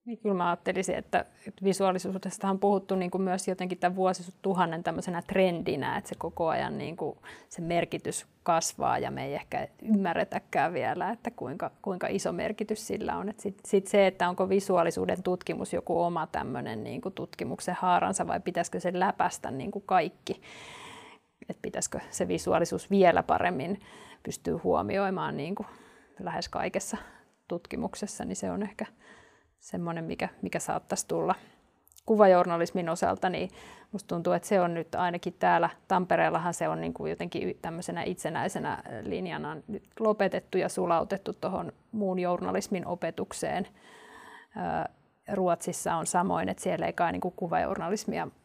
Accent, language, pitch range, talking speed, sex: native, Finnish, 175-210 Hz, 130 wpm, female